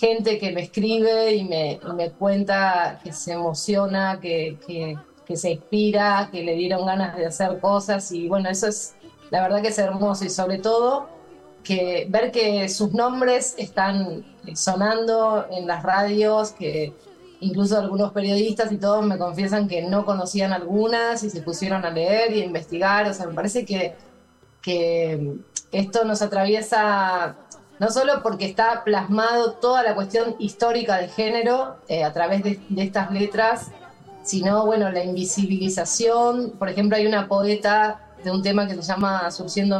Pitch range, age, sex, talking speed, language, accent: 185-225 Hz, 20-39, female, 165 wpm, Spanish, Argentinian